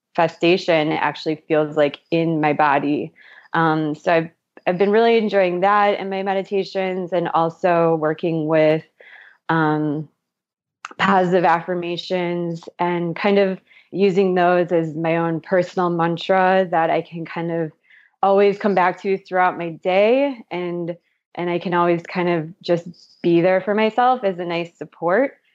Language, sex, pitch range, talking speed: English, female, 165-190 Hz, 150 wpm